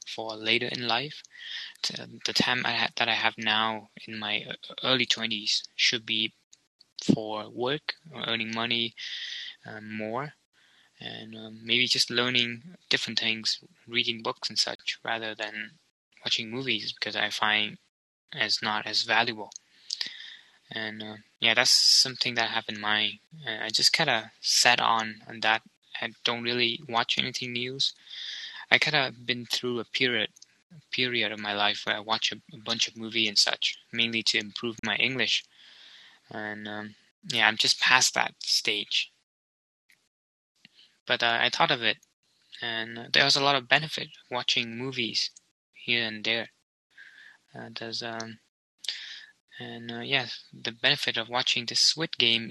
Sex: male